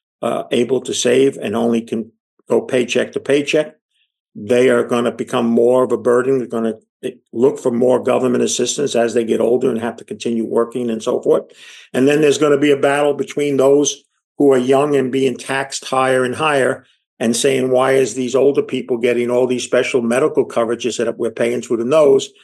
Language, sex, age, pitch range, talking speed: English, male, 50-69, 125-175 Hz, 210 wpm